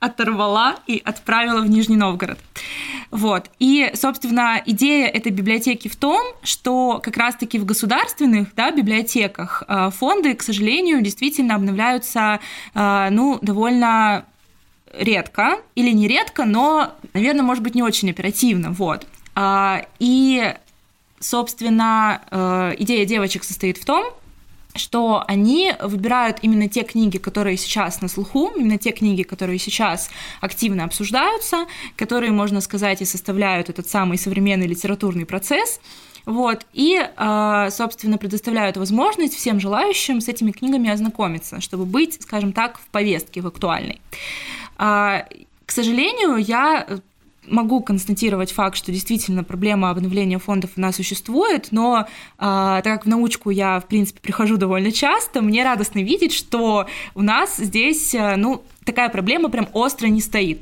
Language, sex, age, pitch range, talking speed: Russian, female, 20-39, 200-250 Hz, 130 wpm